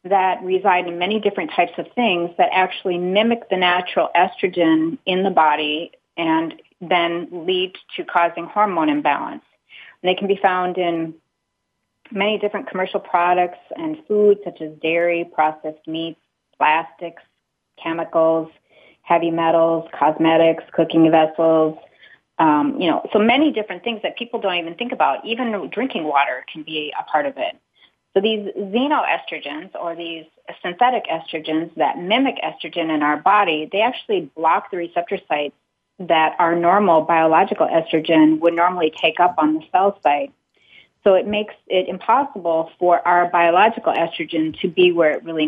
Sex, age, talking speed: female, 30-49, 155 wpm